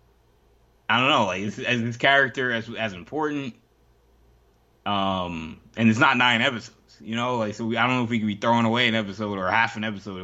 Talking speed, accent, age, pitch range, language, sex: 210 wpm, American, 20-39, 85-115 Hz, English, male